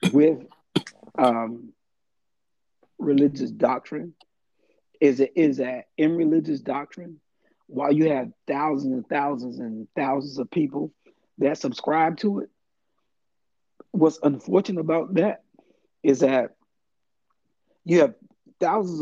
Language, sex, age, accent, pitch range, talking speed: English, male, 40-59, American, 135-185 Hz, 105 wpm